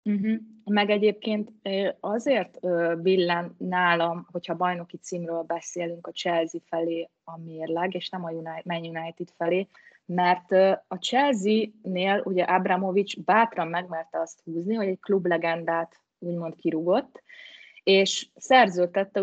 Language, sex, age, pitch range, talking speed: Hungarian, female, 20-39, 170-205 Hz, 110 wpm